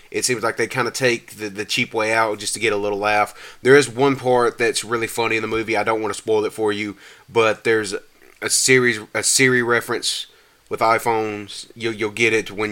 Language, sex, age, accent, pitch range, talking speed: English, male, 30-49, American, 105-130 Hz, 235 wpm